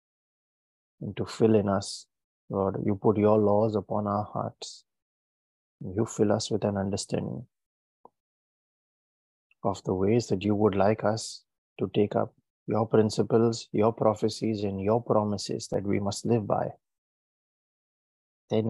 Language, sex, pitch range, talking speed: English, male, 100-110 Hz, 140 wpm